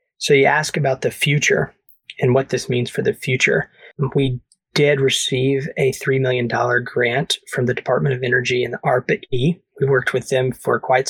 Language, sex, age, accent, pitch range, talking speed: English, male, 20-39, American, 125-150 Hz, 185 wpm